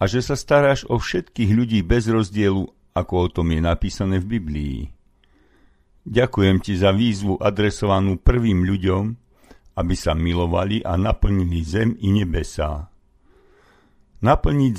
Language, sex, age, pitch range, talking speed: Slovak, male, 50-69, 85-110 Hz, 130 wpm